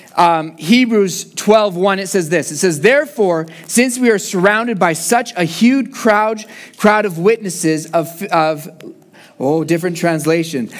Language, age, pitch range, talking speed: English, 30-49, 155-205 Hz, 145 wpm